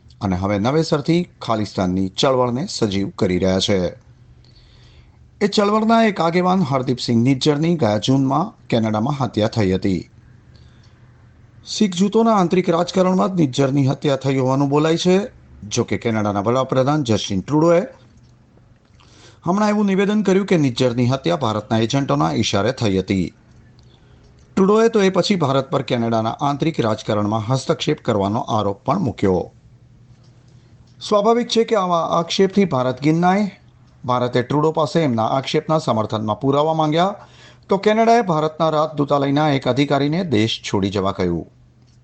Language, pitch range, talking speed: Gujarati, 115-170 Hz, 100 wpm